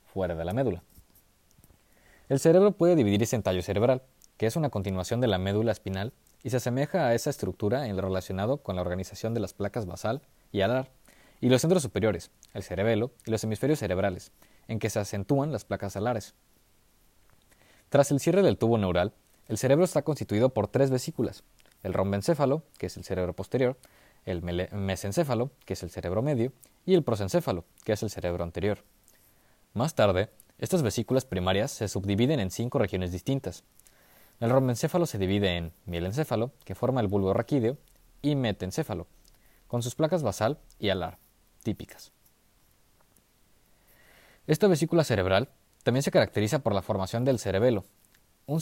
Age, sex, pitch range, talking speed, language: 20-39, male, 95-130 Hz, 165 wpm, Spanish